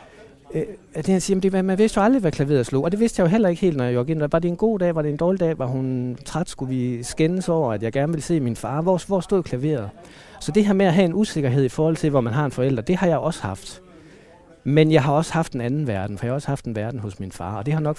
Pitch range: 120-160 Hz